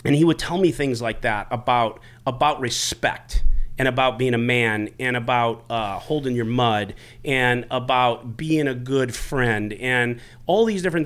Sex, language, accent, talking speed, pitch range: male, English, American, 175 wpm, 120-145 Hz